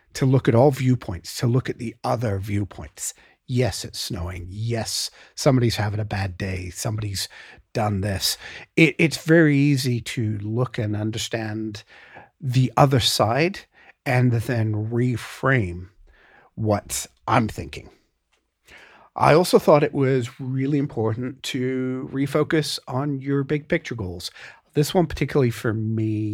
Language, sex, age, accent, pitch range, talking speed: English, male, 50-69, American, 105-140 Hz, 130 wpm